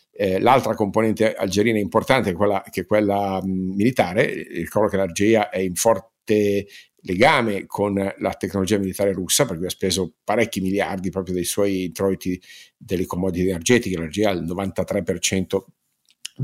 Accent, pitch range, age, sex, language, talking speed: native, 90-105 Hz, 50-69, male, Italian, 140 wpm